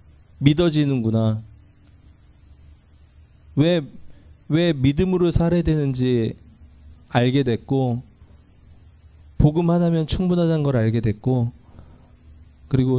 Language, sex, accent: Korean, male, native